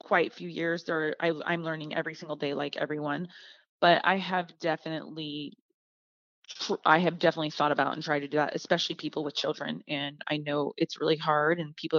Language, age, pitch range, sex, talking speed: English, 30-49, 150-175 Hz, female, 190 wpm